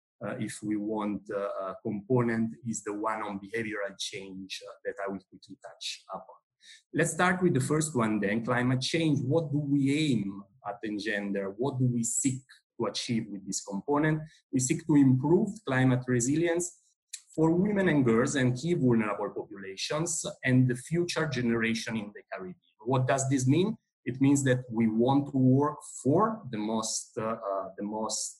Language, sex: English, male